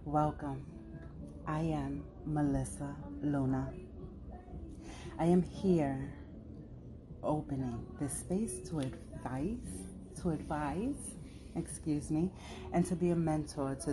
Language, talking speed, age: English, 100 wpm, 30-49